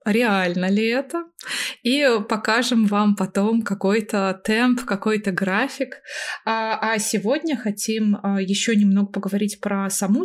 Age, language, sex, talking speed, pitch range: 20-39, Russian, female, 110 wpm, 195-225 Hz